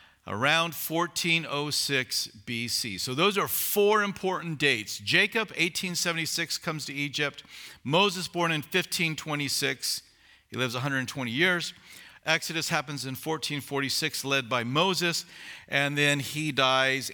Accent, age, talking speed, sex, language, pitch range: American, 50-69, 115 wpm, male, English, 130-175 Hz